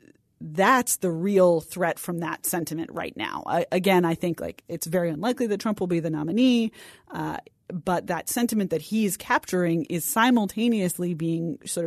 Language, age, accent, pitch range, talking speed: English, 30-49, American, 165-210 Hz, 165 wpm